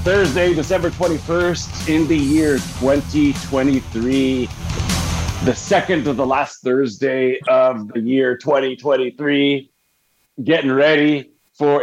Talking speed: 100 wpm